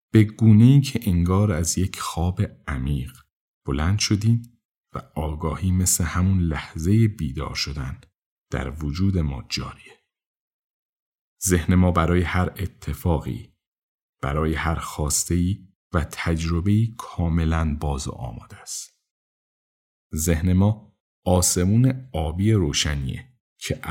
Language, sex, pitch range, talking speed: Persian, male, 75-95 Hz, 110 wpm